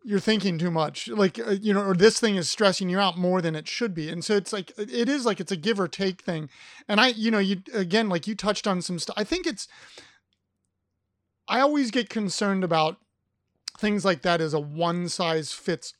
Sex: male